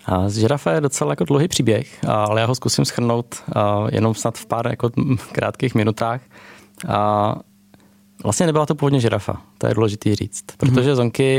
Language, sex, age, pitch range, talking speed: Czech, male, 20-39, 105-120 Hz, 170 wpm